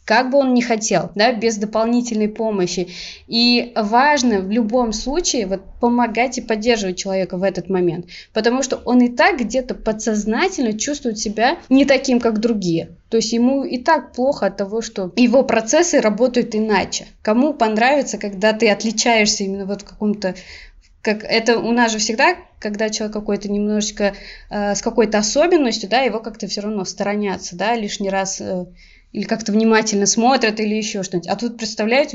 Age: 20-39